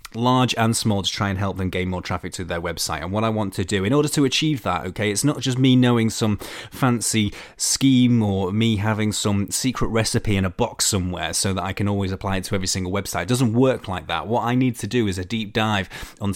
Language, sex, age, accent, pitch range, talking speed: English, male, 30-49, British, 95-115 Hz, 255 wpm